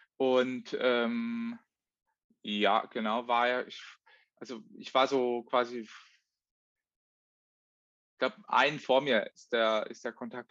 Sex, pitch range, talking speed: male, 120-145 Hz, 120 wpm